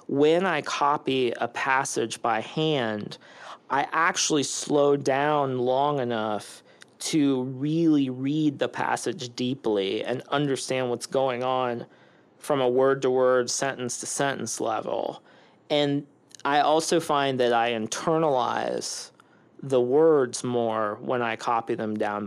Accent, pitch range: American, 115-145 Hz